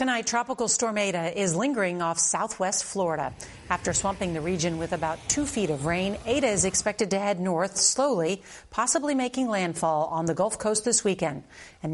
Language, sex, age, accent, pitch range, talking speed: English, female, 40-59, American, 175-230 Hz, 180 wpm